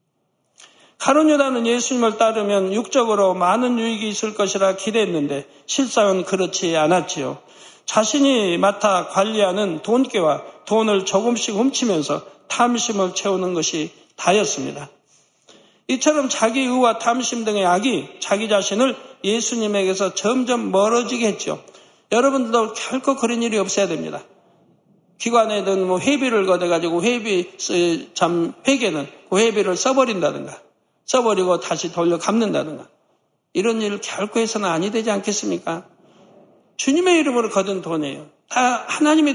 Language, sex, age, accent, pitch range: Korean, male, 60-79, native, 185-235 Hz